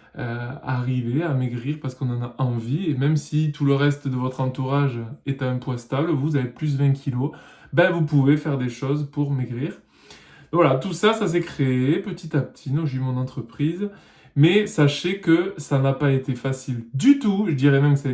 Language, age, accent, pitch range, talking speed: French, 20-39, French, 130-150 Hz, 225 wpm